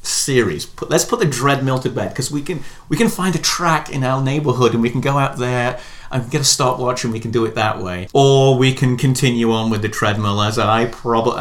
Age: 30-49